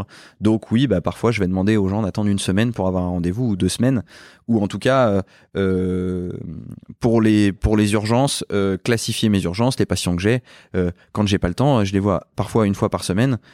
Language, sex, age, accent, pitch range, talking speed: French, male, 20-39, French, 90-110 Hz, 225 wpm